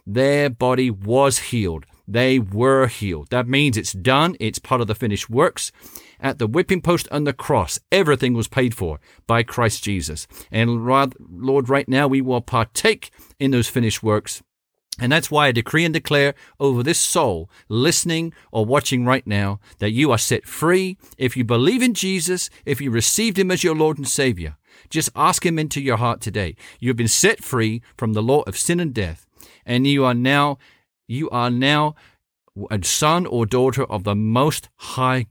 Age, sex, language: 50-69, male, English